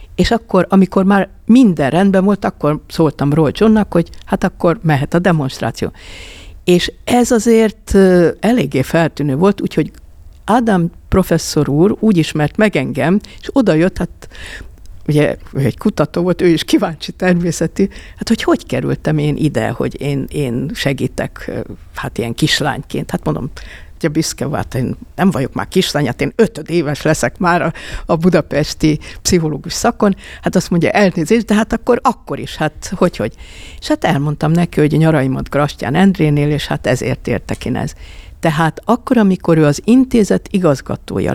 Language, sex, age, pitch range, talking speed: Hungarian, female, 60-79, 145-195 Hz, 150 wpm